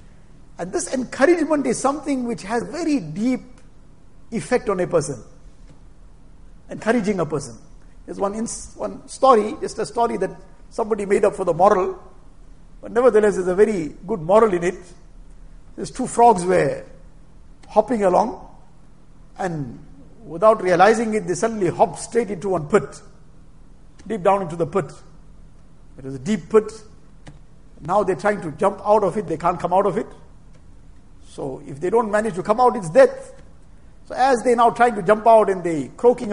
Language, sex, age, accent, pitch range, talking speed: English, male, 50-69, Indian, 175-225 Hz, 170 wpm